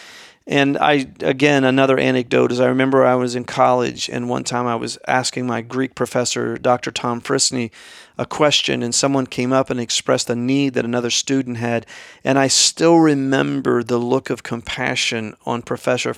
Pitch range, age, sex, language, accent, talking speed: 125-155 Hz, 40-59, male, English, American, 180 wpm